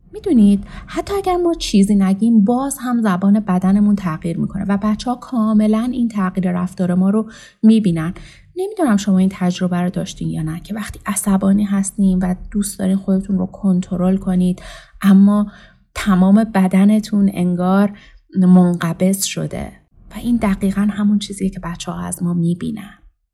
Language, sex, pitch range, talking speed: Persian, female, 180-220 Hz, 150 wpm